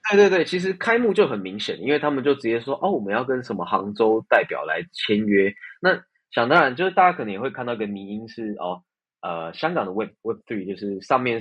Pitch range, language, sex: 100-135 Hz, Chinese, male